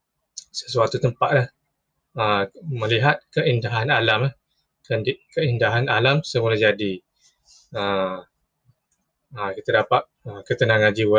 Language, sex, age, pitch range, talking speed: Malay, male, 20-39, 105-140 Hz, 75 wpm